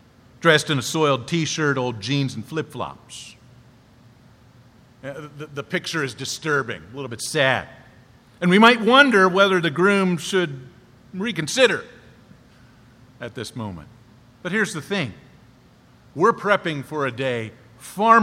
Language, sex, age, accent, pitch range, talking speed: English, male, 50-69, American, 125-170 Hz, 130 wpm